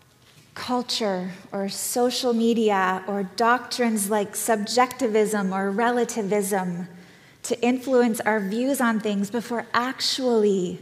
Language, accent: English, American